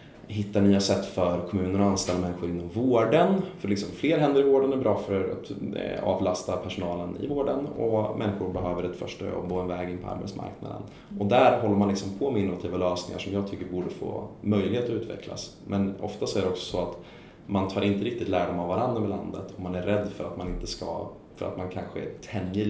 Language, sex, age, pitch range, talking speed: Swedish, male, 20-39, 90-105 Hz, 215 wpm